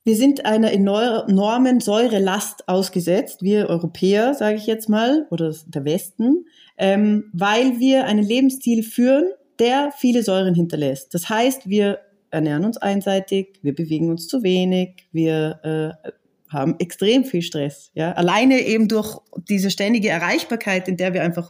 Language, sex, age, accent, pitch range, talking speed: German, female, 30-49, German, 180-235 Hz, 145 wpm